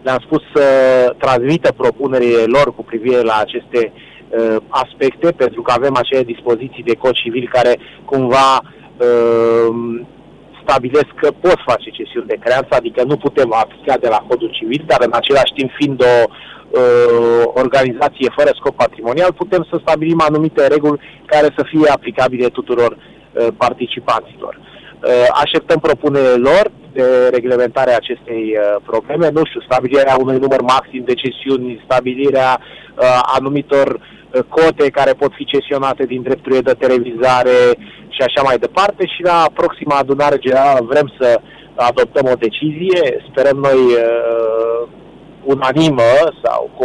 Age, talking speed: 30-49, 145 wpm